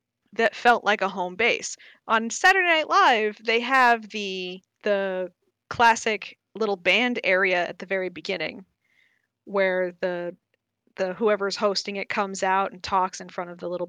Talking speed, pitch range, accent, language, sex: 160 wpm, 195-235 Hz, American, English, female